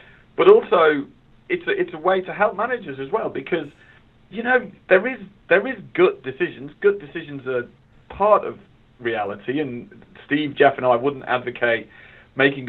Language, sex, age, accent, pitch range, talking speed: English, male, 40-59, British, 120-170 Hz, 155 wpm